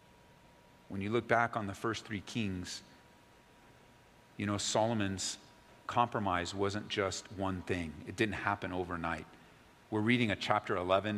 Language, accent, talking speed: English, American, 140 wpm